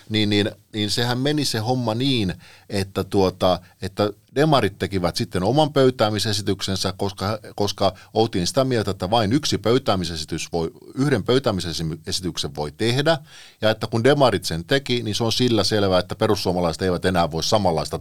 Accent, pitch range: native, 95-125 Hz